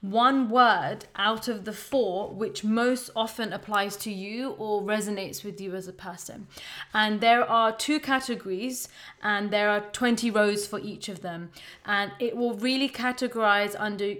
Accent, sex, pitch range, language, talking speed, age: British, female, 205-245 Hz, English, 165 wpm, 20-39